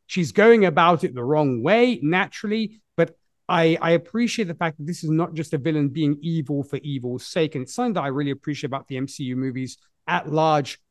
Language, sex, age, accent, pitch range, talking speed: English, male, 30-49, British, 135-170 Hz, 215 wpm